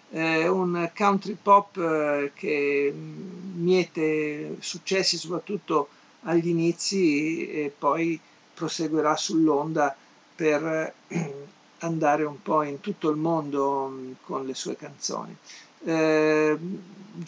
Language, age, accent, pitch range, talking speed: Italian, 50-69, native, 150-175 Hz, 100 wpm